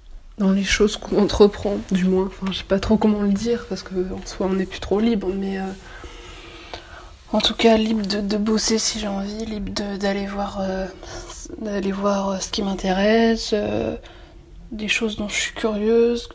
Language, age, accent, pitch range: French, 20-39, French, 185-215 Hz